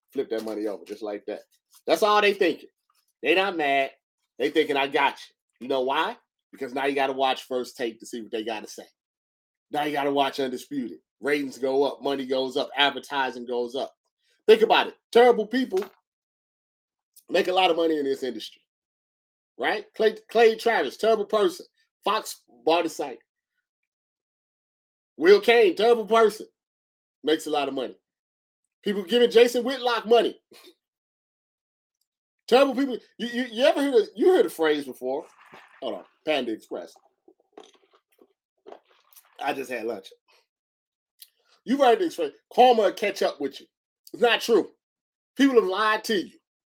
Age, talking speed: 30-49, 165 wpm